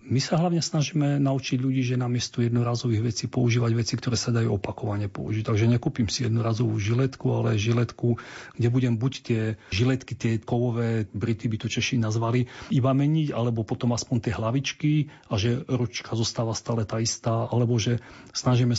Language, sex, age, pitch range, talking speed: Slovak, male, 40-59, 115-130 Hz, 175 wpm